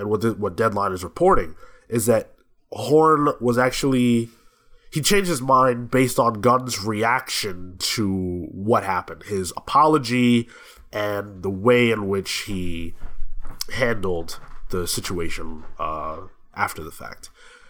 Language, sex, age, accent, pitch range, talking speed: English, male, 20-39, American, 105-155 Hz, 120 wpm